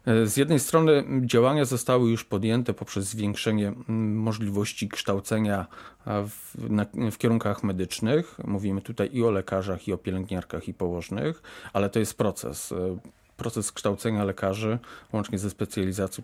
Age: 30-49